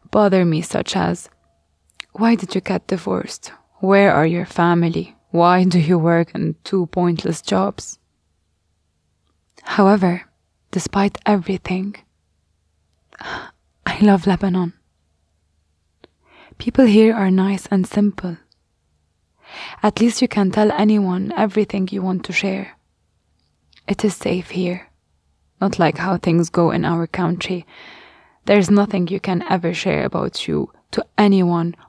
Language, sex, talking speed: English, female, 125 wpm